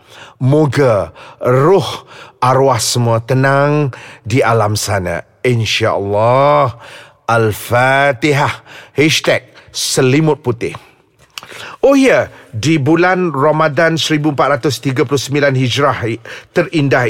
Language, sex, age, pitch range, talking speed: Malay, male, 40-59, 130-165 Hz, 80 wpm